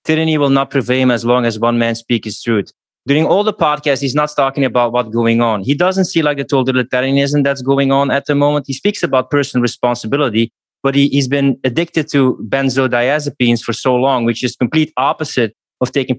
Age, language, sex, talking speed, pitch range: 20-39, English, male, 210 wpm, 120-150 Hz